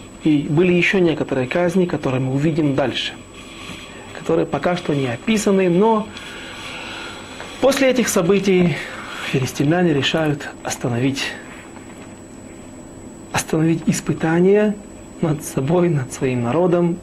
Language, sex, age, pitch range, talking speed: Russian, male, 40-59, 135-185 Hz, 100 wpm